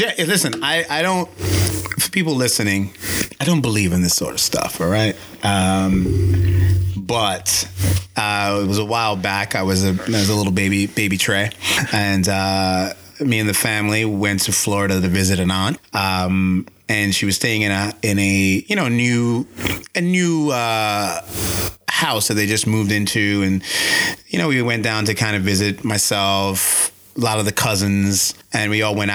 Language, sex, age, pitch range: English, male, 30-49, 95-125 Hz